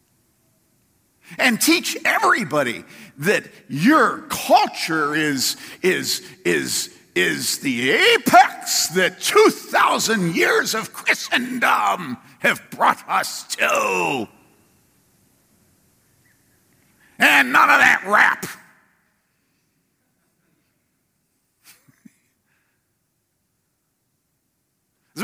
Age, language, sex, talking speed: 50-69, English, male, 65 wpm